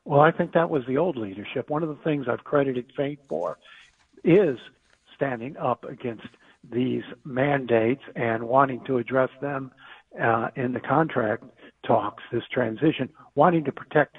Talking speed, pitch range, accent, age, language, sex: 155 wpm, 125-155 Hz, American, 60-79, English, male